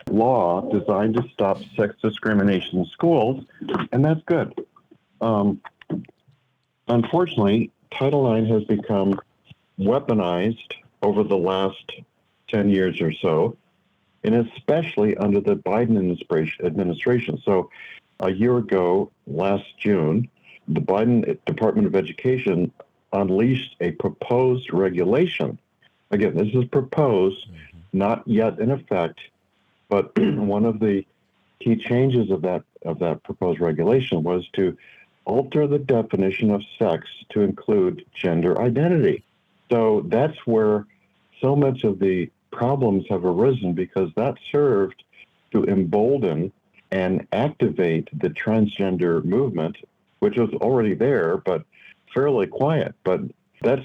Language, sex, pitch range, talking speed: English, male, 95-130 Hz, 120 wpm